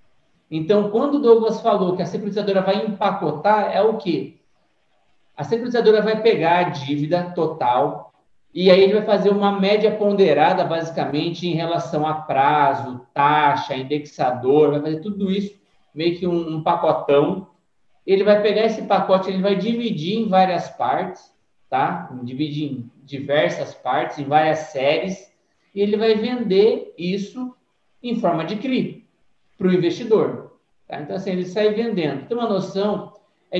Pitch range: 160-205 Hz